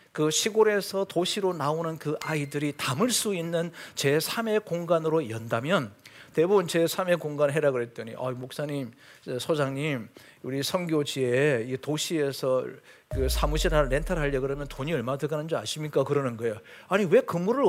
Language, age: Korean, 40-59